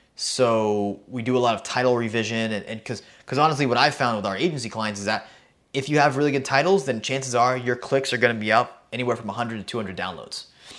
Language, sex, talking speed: English, male, 235 wpm